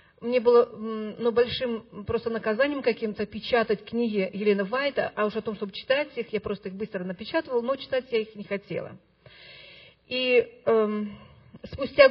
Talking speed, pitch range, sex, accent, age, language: 160 wpm, 220-265 Hz, female, native, 40-59, Russian